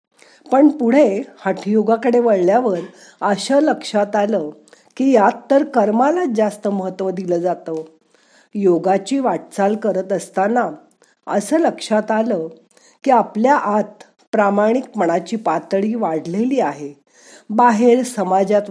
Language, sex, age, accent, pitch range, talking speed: Marathi, female, 50-69, native, 195-255 Hz, 105 wpm